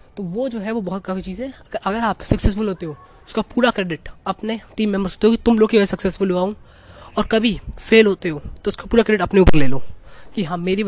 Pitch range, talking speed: 160-200 Hz, 245 wpm